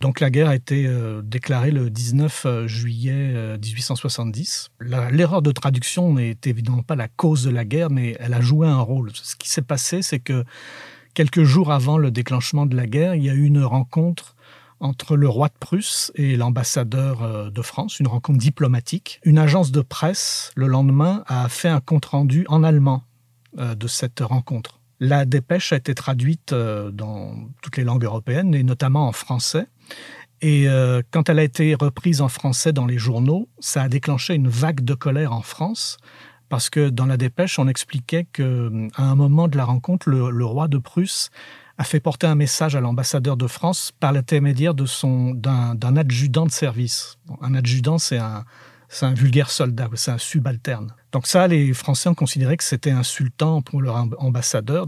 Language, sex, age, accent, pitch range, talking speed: French, male, 50-69, French, 125-155 Hz, 190 wpm